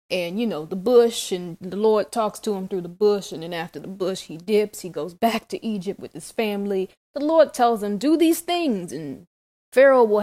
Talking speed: 230 wpm